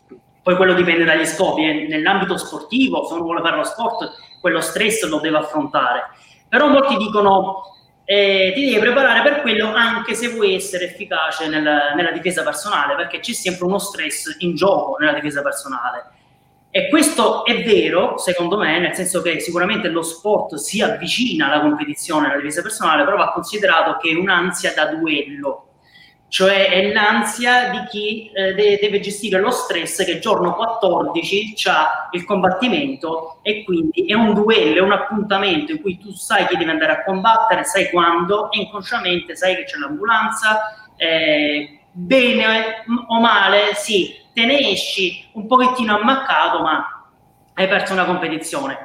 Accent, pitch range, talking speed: native, 165-215 Hz, 160 wpm